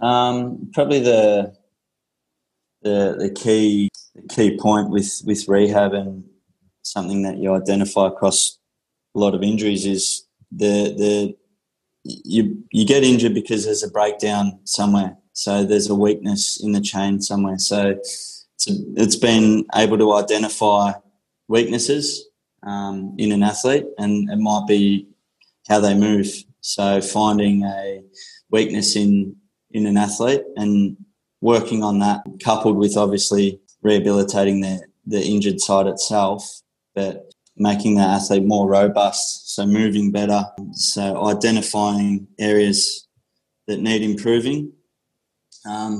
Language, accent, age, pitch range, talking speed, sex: English, Australian, 20-39, 100-105 Hz, 130 wpm, male